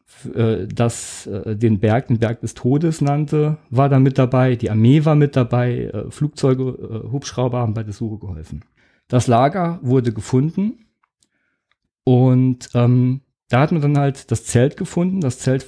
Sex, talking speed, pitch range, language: male, 155 wpm, 115-145 Hz, English